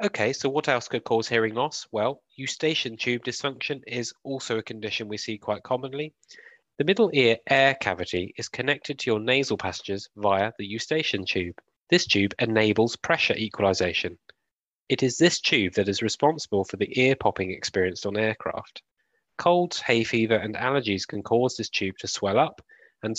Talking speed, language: 175 wpm, English